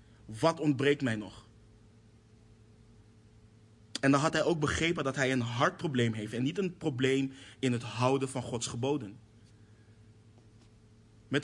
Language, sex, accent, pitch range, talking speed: Dutch, male, Dutch, 110-135 Hz, 135 wpm